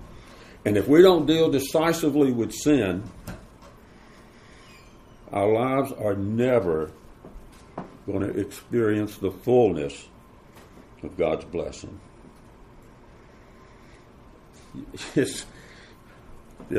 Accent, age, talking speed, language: American, 60-79, 75 wpm, English